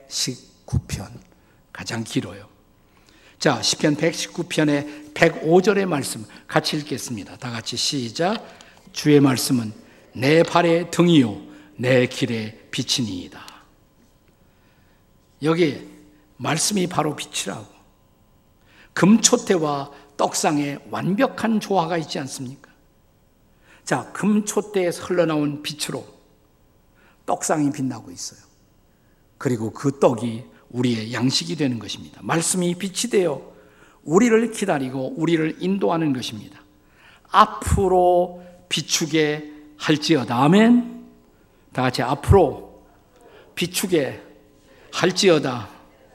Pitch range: 115-170 Hz